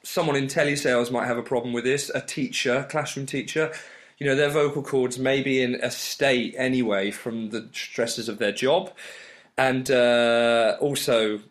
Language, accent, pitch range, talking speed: English, British, 115-145 Hz, 170 wpm